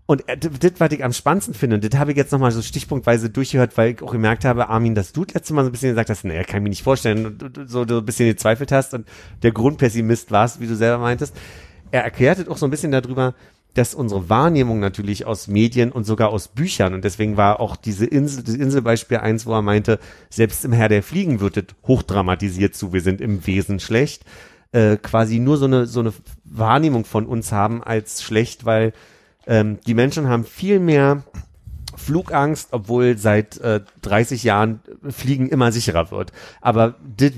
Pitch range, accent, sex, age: 105-130 Hz, German, male, 40-59